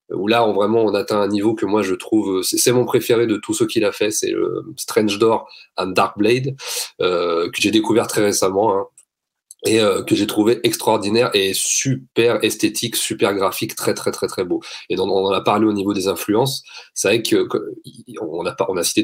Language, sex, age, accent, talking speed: French, male, 30-49, French, 215 wpm